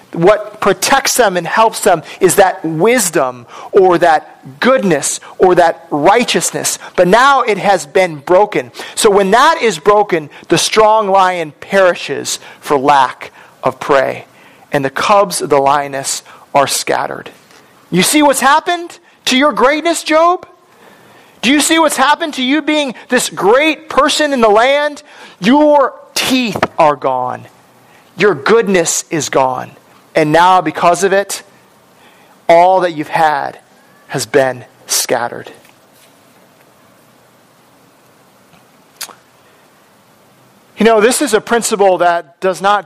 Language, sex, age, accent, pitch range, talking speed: English, male, 40-59, American, 165-235 Hz, 130 wpm